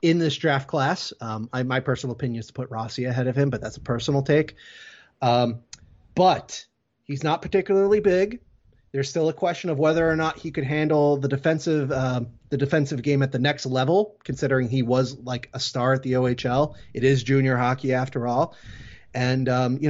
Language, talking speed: English, 200 wpm